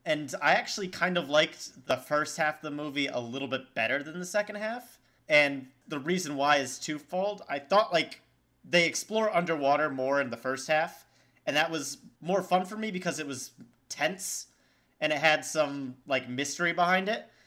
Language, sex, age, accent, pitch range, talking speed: English, male, 30-49, American, 135-180 Hz, 190 wpm